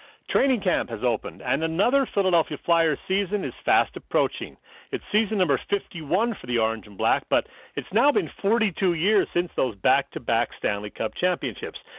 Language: English